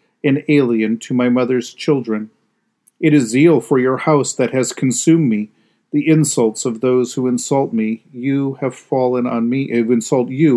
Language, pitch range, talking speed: English, 115-145 Hz, 170 wpm